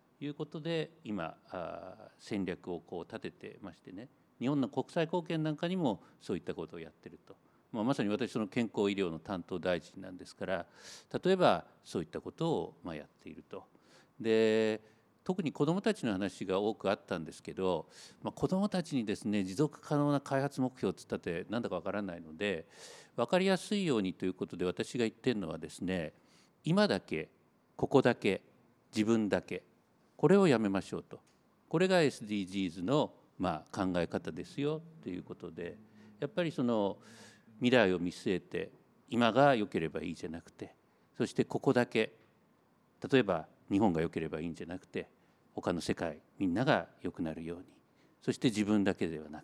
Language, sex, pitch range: Japanese, male, 100-165 Hz